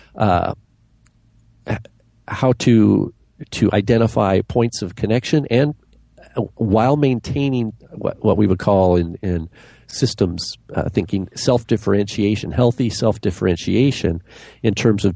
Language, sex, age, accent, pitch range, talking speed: English, male, 50-69, American, 100-120 Hz, 120 wpm